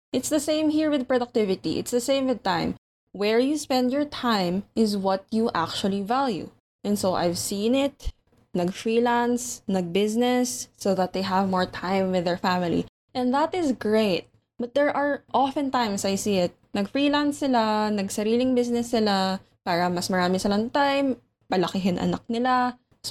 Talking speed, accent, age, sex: 165 wpm, Filipino, 10-29, female